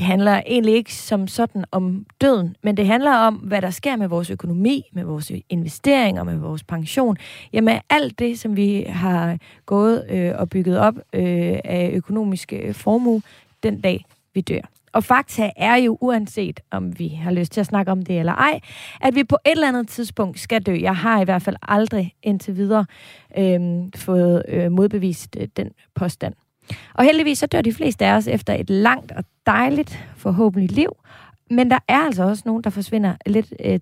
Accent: native